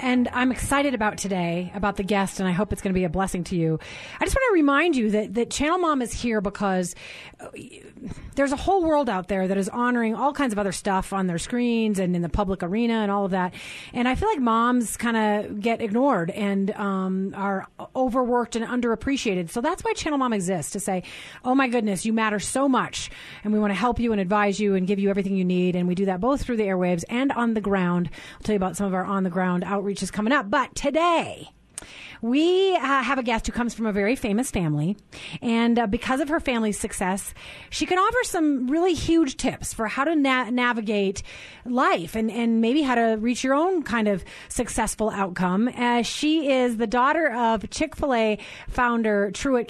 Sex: female